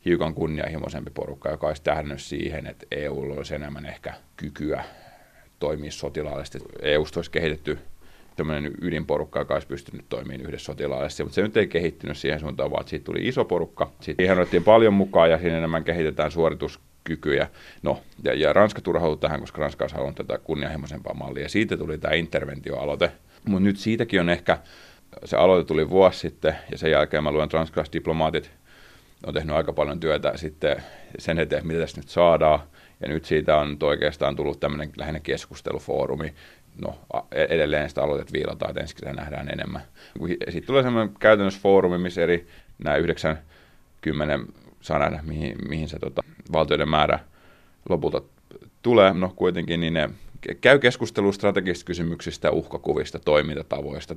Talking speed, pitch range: 155 wpm, 75-90 Hz